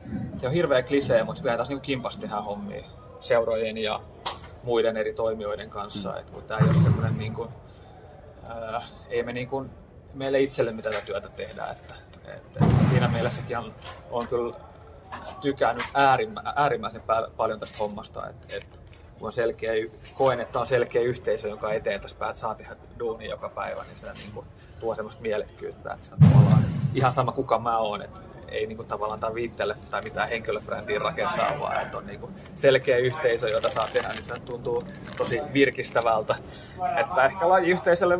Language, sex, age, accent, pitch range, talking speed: Finnish, male, 30-49, native, 110-140 Hz, 145 wpm